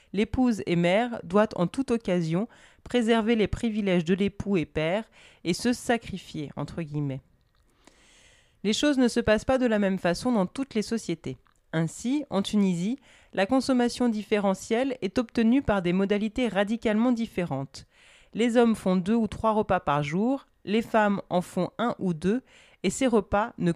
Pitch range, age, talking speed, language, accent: 180-225 Hz, 30-49, 160 wpm, French, French